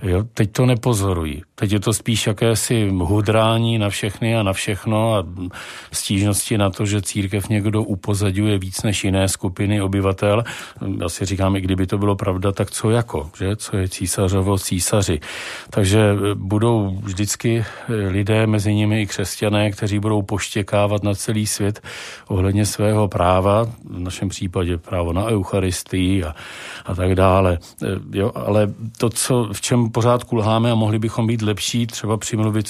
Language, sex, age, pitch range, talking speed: Czech, male, 40-59, 95-110 Hz, 160 wpm